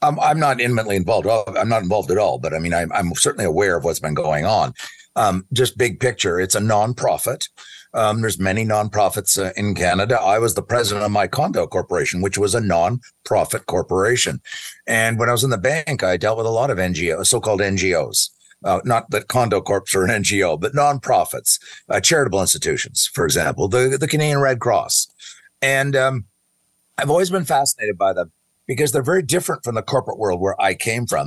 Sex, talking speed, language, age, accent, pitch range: male, 200 wpm, English, 50-69, American, 100-135 Hz